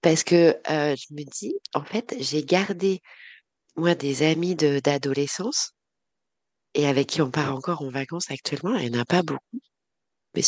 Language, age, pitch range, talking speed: French, 30-49, 150-185 Hz, 185 wpm